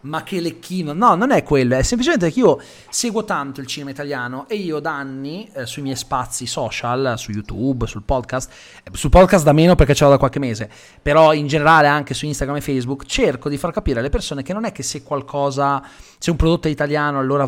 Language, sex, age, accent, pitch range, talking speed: Italian, male, 30-49, native, 130-165 Hz, 225 wpm